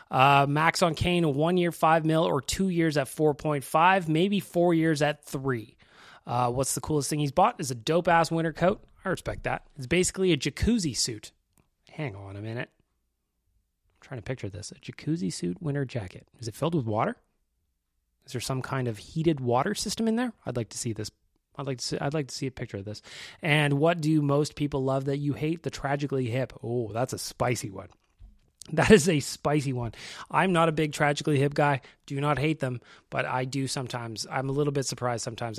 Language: English